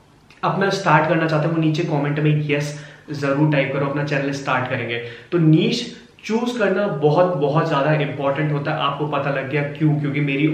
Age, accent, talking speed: 20-39, native, 200 wpm